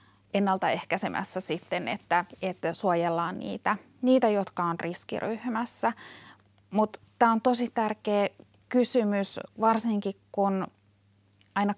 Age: 30-49